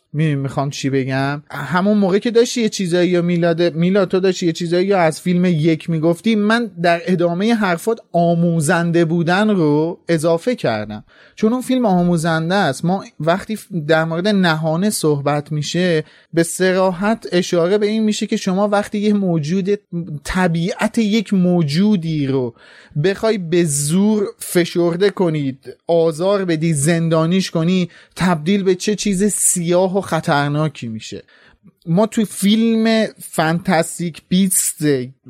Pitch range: 160-205 Hz